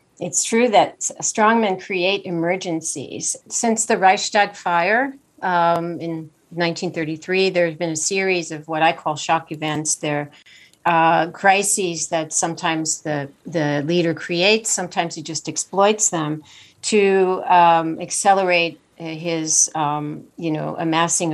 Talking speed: 125 wpm